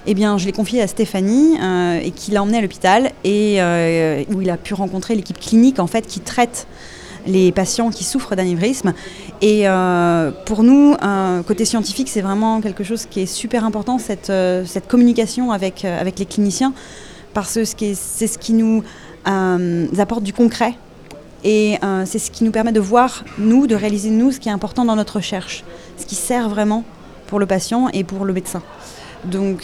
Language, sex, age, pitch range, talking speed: French, female, 20-39, 195-235 Hz, 200 wpm